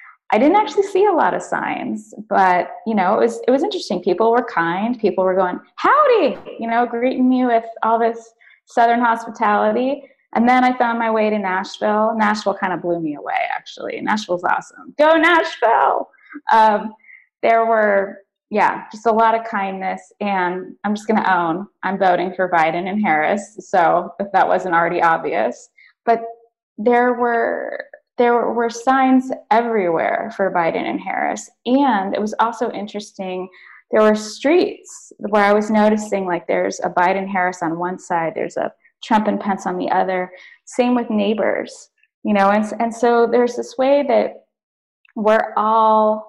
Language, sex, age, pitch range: English, female, 20-39, 195-255 Hz